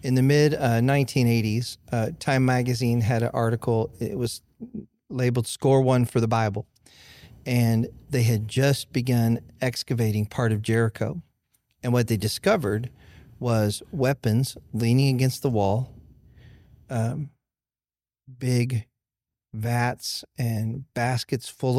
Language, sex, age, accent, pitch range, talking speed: English, male, 40-59, American, 105-125 Hz, 115 wpm